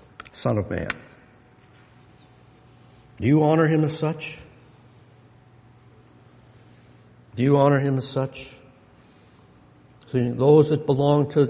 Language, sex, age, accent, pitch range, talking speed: English, male, 60-79, American, 125-165 Hz, 105 wpm